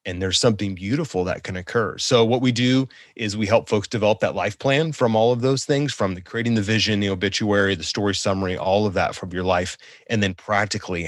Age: 30-49